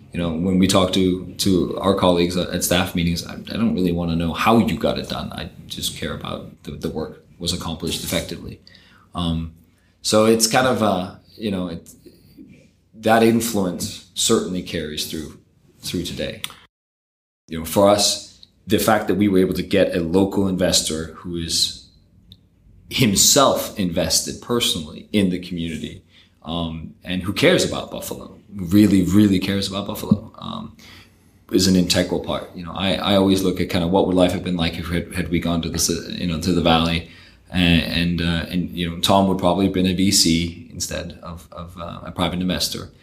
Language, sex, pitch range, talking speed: English, male, 85-95 Hz, 190 wpm